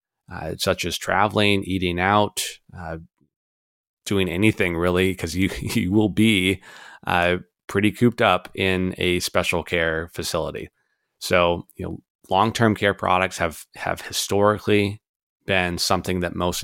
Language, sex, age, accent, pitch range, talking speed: English, male, 20-39, American, 85-100 Hz, 135 wpm